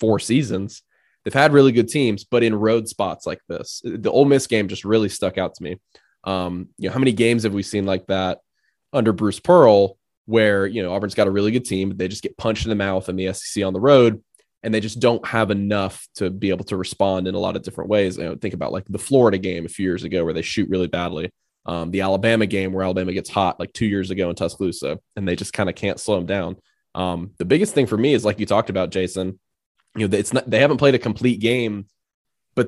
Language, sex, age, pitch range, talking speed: English, male, 20-39, 95-115 Hz, 255 wpm